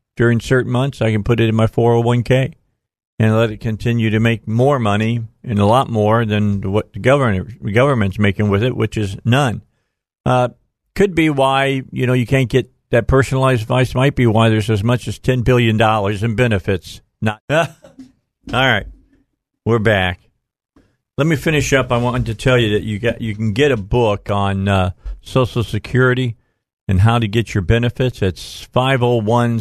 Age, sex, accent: 50-69, male, American